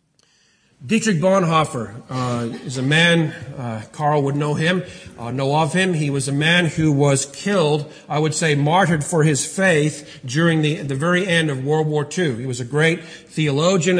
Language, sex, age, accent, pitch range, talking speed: English, male, 50-69, American, 150-180 Hz, 185 wpm